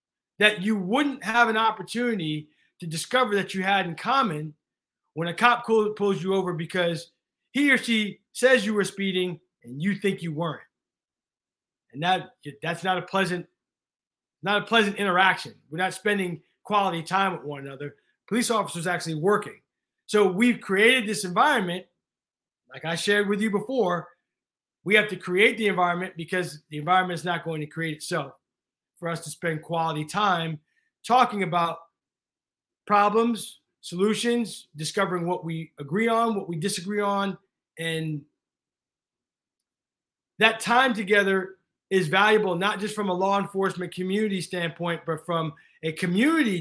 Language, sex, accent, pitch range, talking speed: English, male, American, 170-210 Hz, 145 wpm